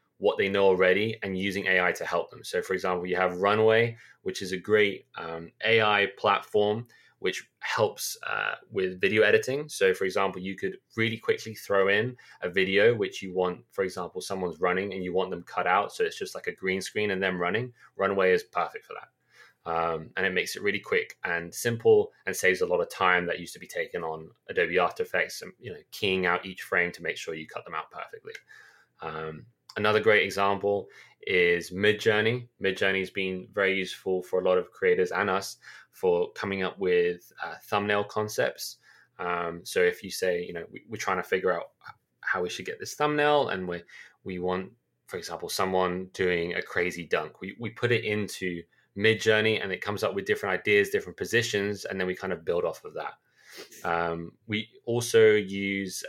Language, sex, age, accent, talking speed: English, male, 20-39, British, 205 wpm